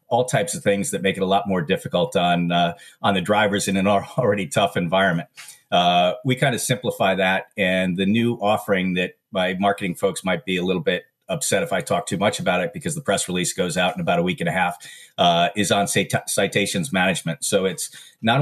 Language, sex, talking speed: English, male, 230 wpm